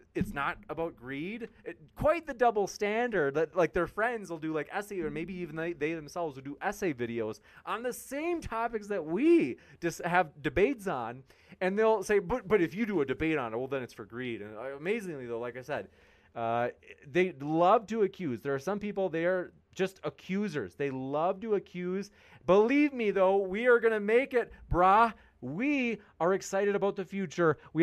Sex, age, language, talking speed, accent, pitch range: male, 30-49, English, 200 wpm, American, 140-200 Hz